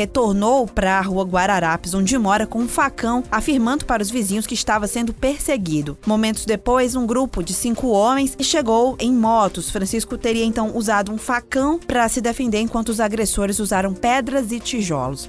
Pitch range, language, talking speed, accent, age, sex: 195-245 Hz, Portuguese, 175 wpm, Brazilian, 20-39, female